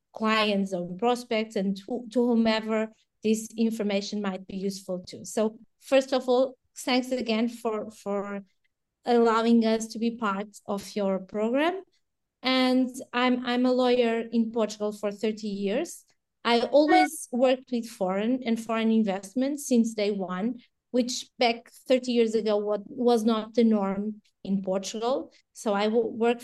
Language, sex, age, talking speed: English, female, 20-39, 150 wpm